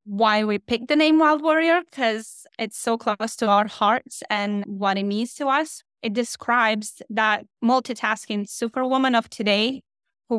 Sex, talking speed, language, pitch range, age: female, 160 wpm, English, 215-245 Hz, 20-39